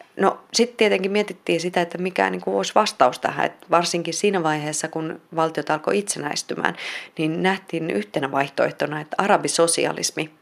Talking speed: 145 wpm